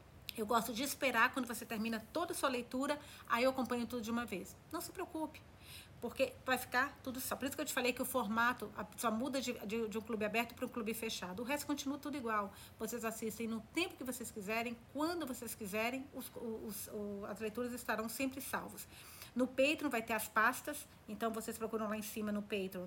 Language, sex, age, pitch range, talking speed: Portuguese, female, 40-59, 215-260 Hz, 210 wpm